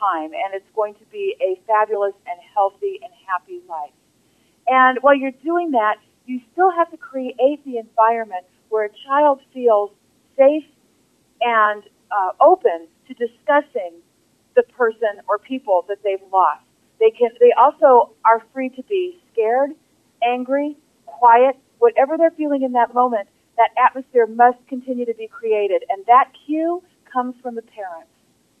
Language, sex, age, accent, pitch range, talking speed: English, female, 40-59, American, 215-285 Hz, 150 wpm